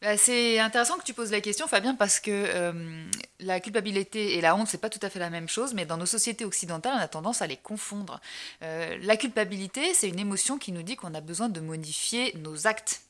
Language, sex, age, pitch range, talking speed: French, female, 20-39, 165-230 Hz, 235 wpm